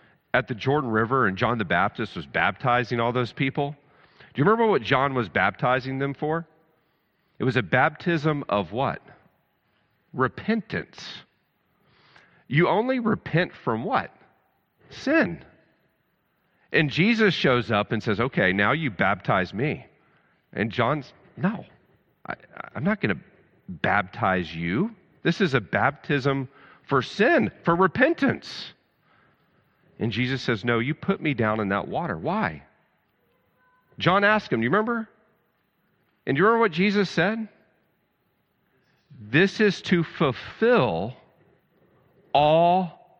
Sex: male